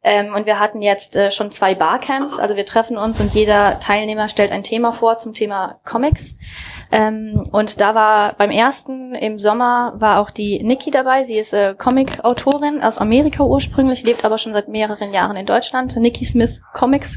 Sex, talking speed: female, 190 wpm